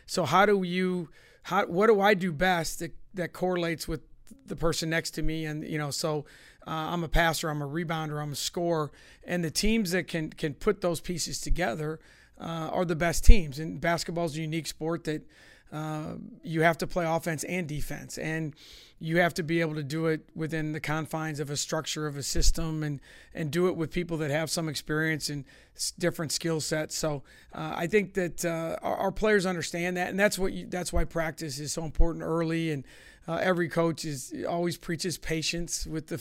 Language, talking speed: English, 215 wpm